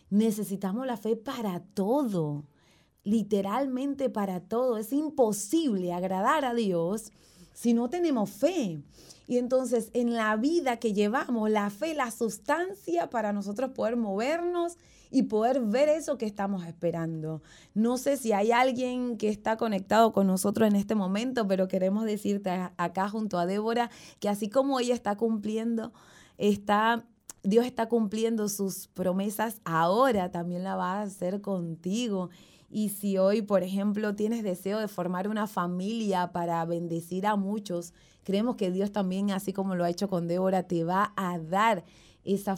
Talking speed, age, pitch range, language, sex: 155 wpm, 30-49, 185-235 Hz, Spanish, female